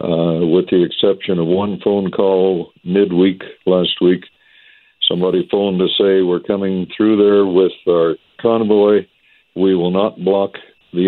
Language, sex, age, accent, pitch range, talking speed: English, male, 60-79, American, 90-105 Hz, 145 wpm